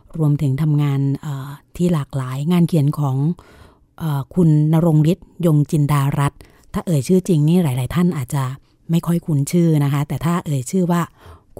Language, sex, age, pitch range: Thai, female, 30-49, 140-170 Hz